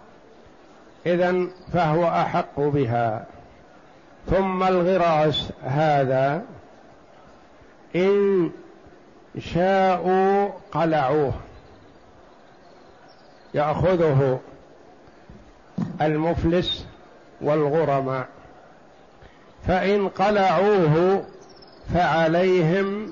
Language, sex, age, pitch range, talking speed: Arabic, male, 60-79, 150-180 Hz, 40 wpm